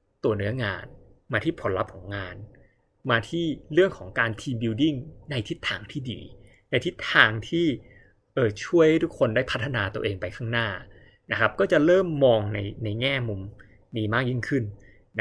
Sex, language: male, Thai